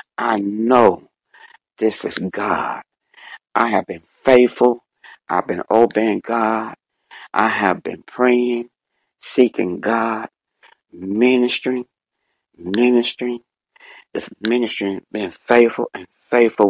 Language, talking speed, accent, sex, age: English, 95 wpm, American, male, 60-79